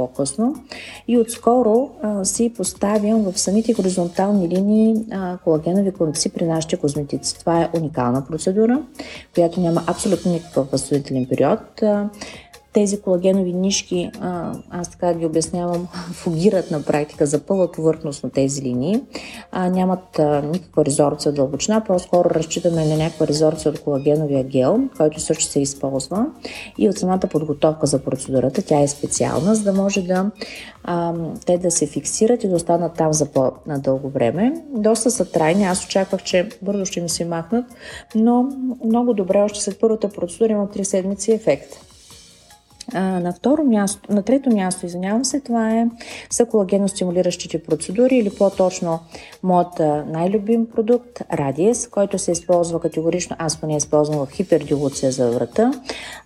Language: Bulgarian